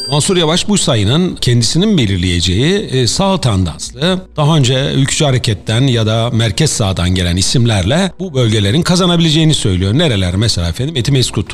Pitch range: 105-165 Hz